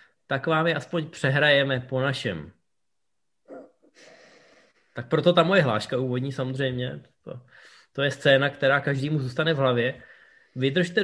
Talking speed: 130 wpm